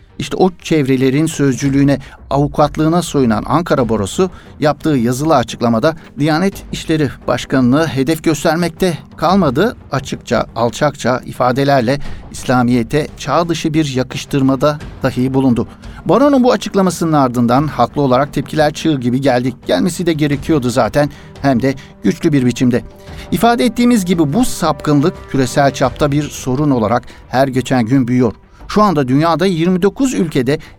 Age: 60-79